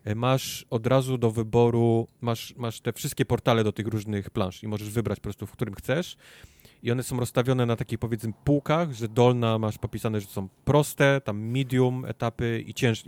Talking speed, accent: 195 wpm, native